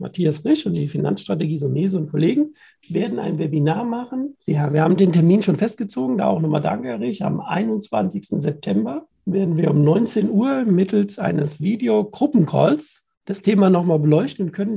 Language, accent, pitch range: German, German, 155-210 Hz